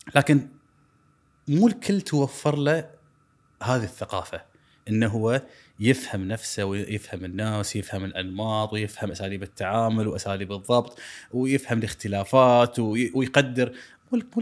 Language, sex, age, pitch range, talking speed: Arabic, male, 20-39, 105-145 Hz, 100 wpm